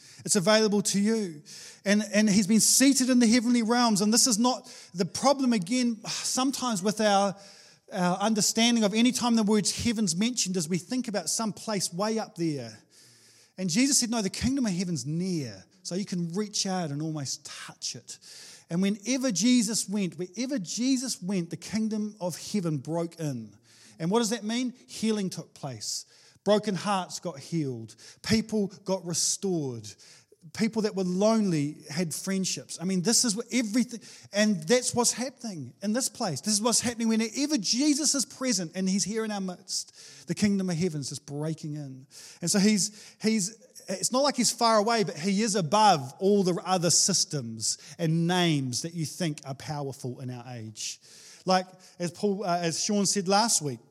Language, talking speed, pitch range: English, 185 wpm, 165-225 Hz